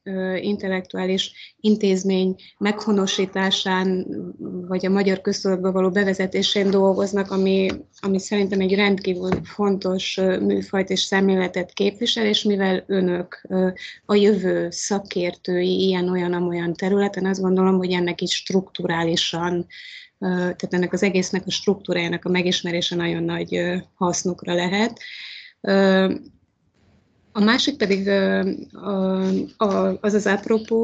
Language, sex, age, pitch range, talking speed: Hungarian, female, 20-39, 180-200 Hz, 105 wpm